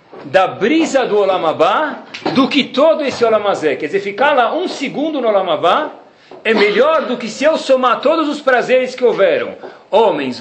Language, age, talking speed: Portuguese, 50-69, 175 wpm